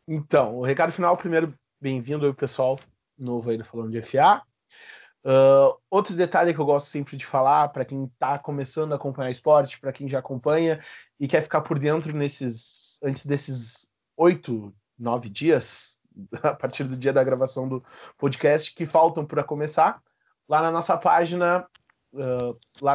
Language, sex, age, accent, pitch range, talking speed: Portuguese, male, 20-39, Brazilian, 130-155 Hz, 165 wpm